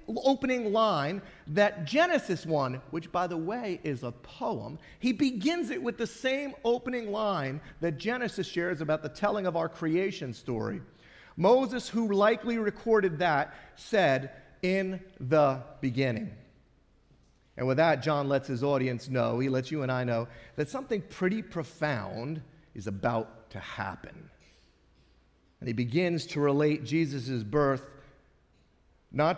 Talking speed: 140 wpm